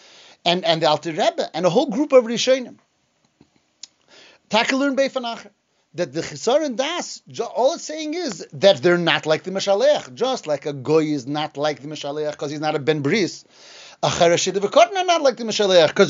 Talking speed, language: 180 wpm, English